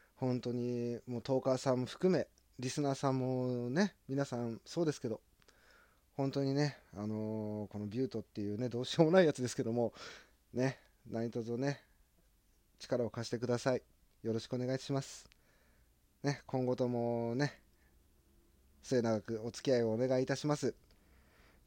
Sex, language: male, Japanese